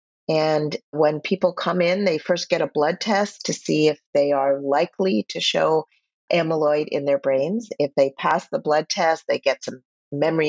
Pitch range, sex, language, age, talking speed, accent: 140-175 Hz, female, English, 50-69, 190 wpm, American